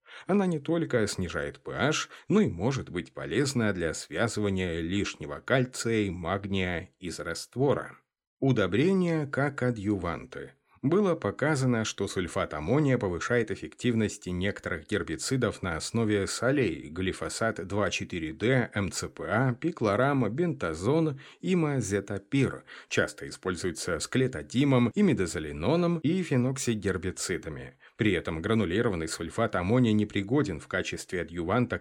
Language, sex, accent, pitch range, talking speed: Russian, male, native, 95-125 Hz, 105 wpm